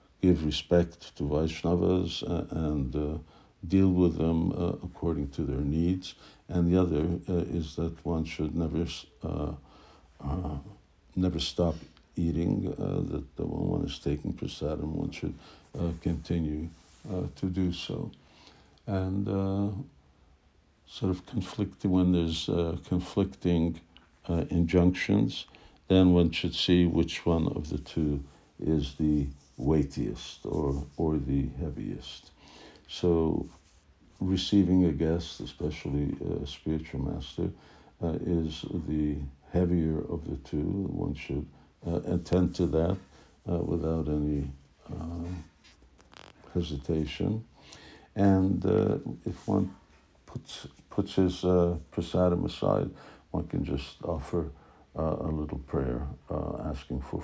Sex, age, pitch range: male, 60-79, 75-90 Hz